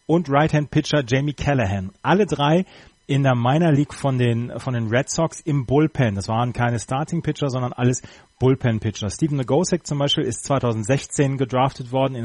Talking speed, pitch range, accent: 180 wpm, 115-140 Hz, German